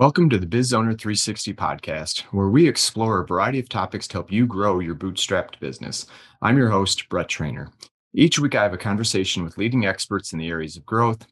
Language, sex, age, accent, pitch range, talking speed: English, male, 30-49, American, 90-115 Hz, 205 wpm